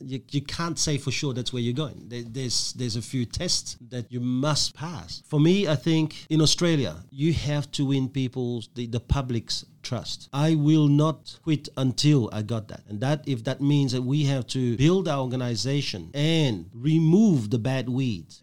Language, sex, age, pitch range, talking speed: English, male, 40-59, 120-155 Hz, 195 wpm